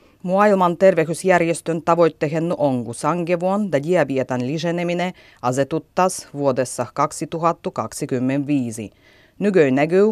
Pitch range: 130-175 Hz